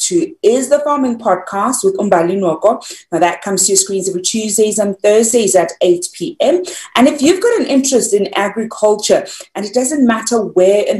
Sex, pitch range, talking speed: female, 175-240 Hz, 190 wpm